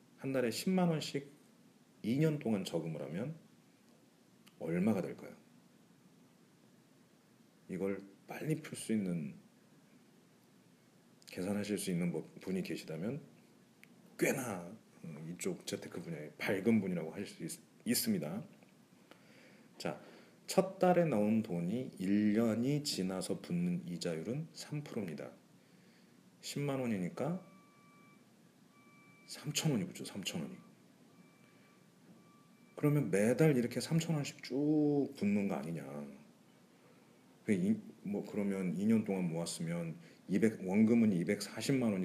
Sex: male